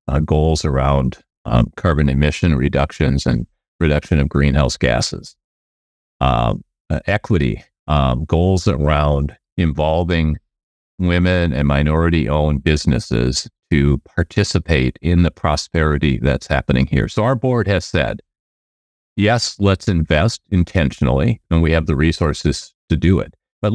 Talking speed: 125 wpm